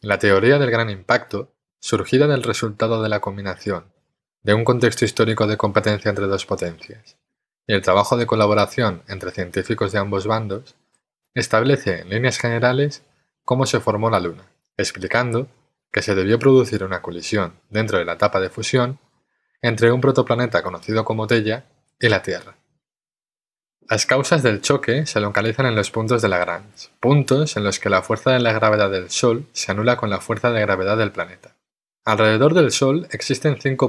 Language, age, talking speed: Spanish, 20-39, 170 wpm